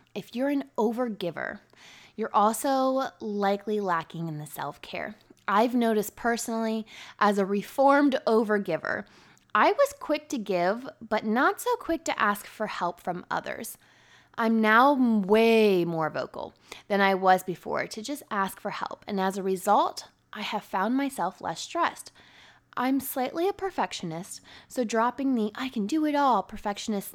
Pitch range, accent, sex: 195-275 Hz, American, female